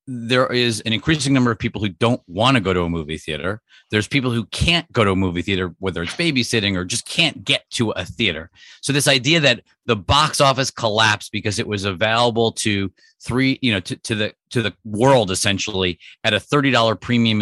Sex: male